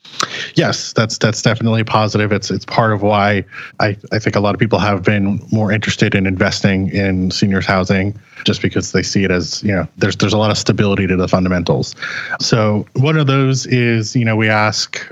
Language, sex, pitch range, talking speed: English, male, 100-125 Hz, 205 wpm